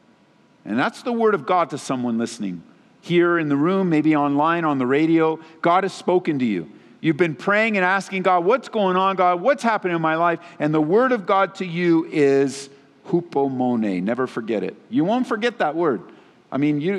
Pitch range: 115-175 Hz